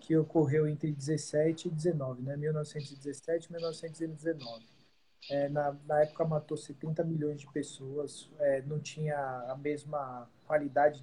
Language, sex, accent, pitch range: Portuguese, male, Brazilian, 145-170 Hz